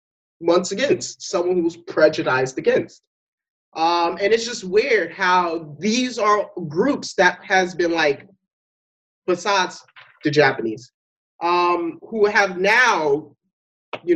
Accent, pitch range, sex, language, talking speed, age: American, 165-270 Hz, male, English, 120 wpm, 30-49